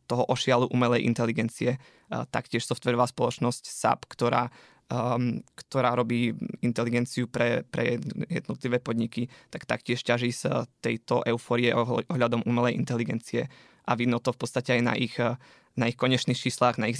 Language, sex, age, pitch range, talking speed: Slovak, male, 20-39, 115-125 Hz, 140 wpm